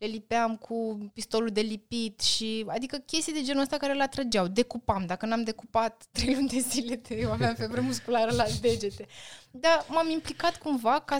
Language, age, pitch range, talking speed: Romanian, 20-39, 215-280 Hz, 180 wpm